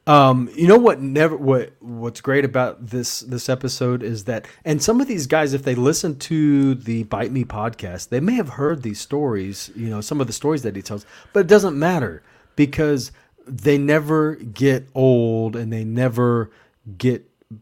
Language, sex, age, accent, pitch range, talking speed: English, male, 30-49, American, 110-145 Hz, 185 wpm